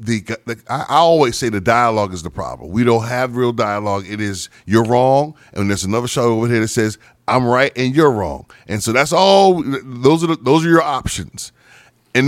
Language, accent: English, American